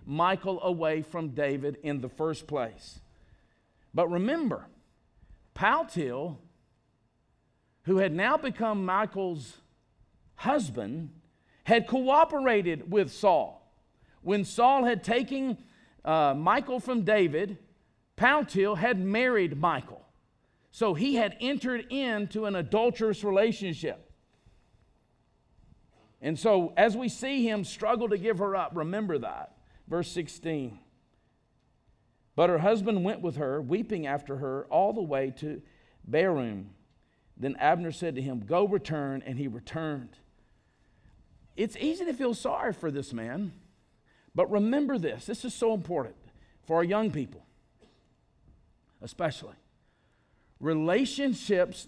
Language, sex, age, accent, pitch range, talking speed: English, male, 50-69, American, 150-225 Hz, 115 wpm